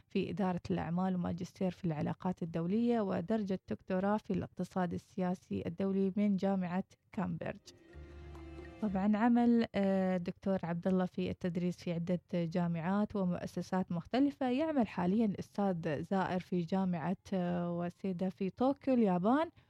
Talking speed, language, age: 115 wpm, Arabic, 20-39